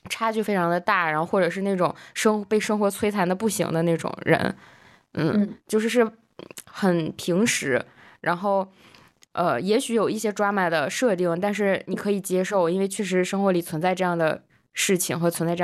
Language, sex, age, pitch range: Chinese, female, 10-29, 175-215 Hz